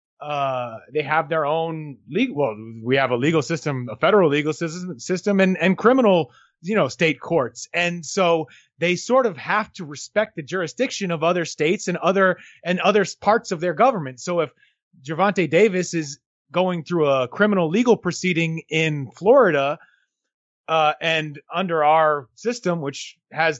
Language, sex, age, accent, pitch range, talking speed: English, male, 30-49, American, 150-195 Hz, 165 wpm